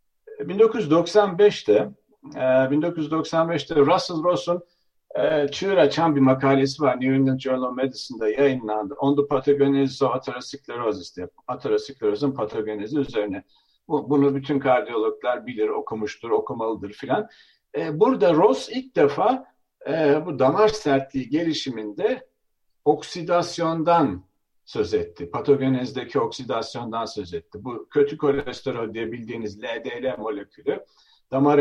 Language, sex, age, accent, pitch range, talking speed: Turkish, male, 60-79, native, 135-175 Hz, 95 wpm